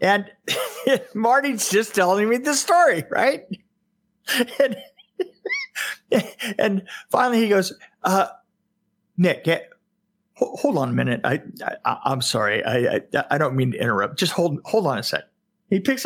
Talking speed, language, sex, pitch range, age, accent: 140 wpm, English, male, 185-235 Hz, 50-69, American